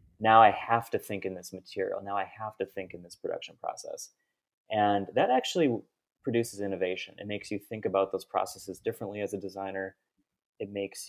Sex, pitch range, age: male, 95-110 Hz, 30-49